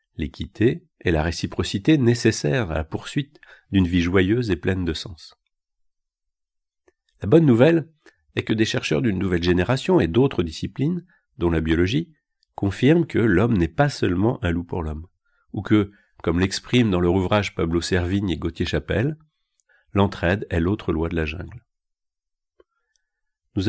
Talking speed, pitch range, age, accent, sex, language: 150 wpm, 85-120 Hz, 50-69, French, male, French